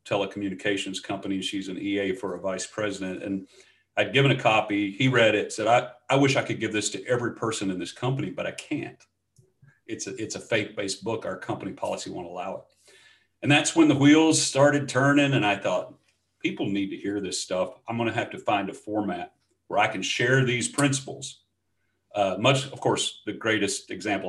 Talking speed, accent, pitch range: 205 wpm, American, 95-130 Hz